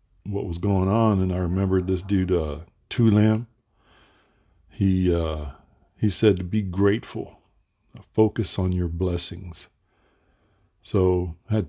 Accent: American